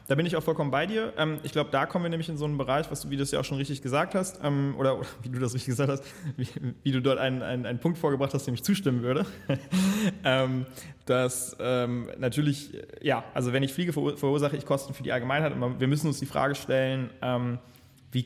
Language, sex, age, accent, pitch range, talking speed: German, male, 20-39, German, 125-140 Hz, 225 wpm